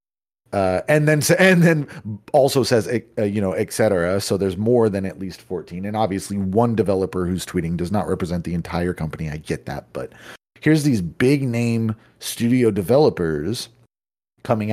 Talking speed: 170 wpm